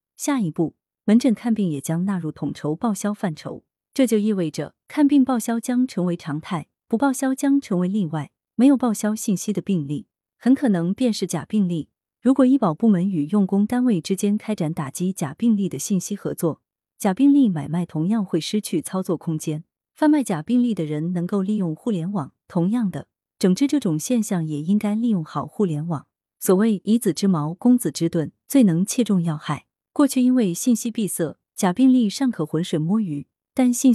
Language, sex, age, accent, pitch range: Chinese, female, 30-49, native, 165-235 Hz